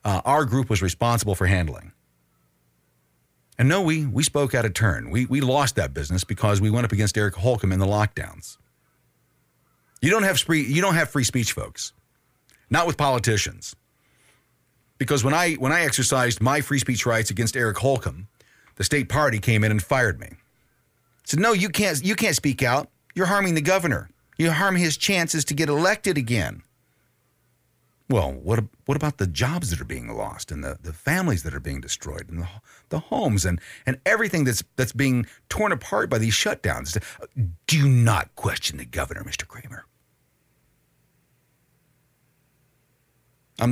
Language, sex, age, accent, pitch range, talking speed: English, male, 40-59, American, 95-140 Hz, 175 wpm